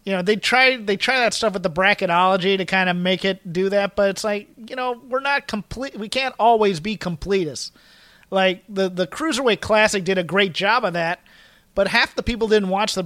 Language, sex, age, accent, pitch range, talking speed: English, male, 30-49, American, 185-225 Hz, 225 wpm